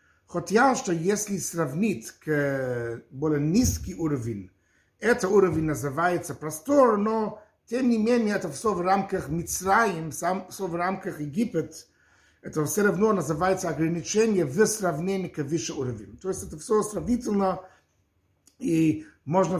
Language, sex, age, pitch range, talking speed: Russian, male, 50-69, 145-200 Hz, 130 wpm